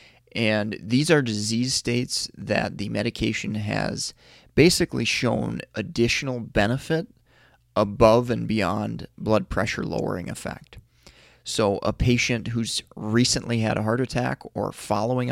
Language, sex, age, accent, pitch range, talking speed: English, male, 30-49, American, 110-125 Hz, 120 wpm